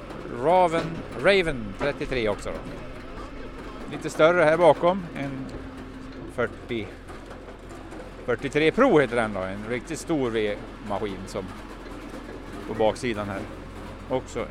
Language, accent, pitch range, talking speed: Swedish, Norwegian, 105-160 Hz, 105 wpm